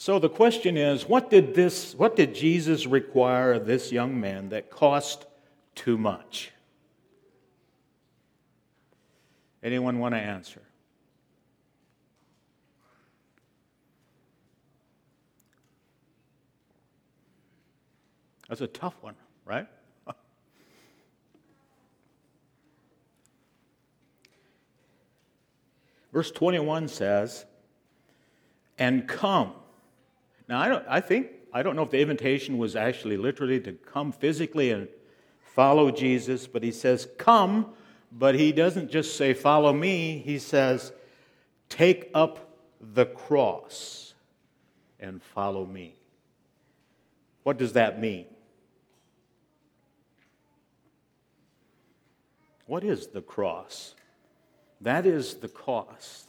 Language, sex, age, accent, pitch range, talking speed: English, male, 60-79, American, 125-160 Hz, 90 wpm